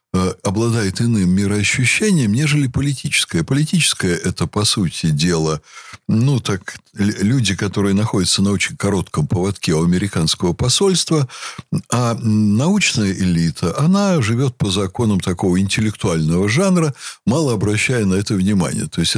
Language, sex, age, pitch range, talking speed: Russian, male, 60-79, 105-150 Hz, 120 wpm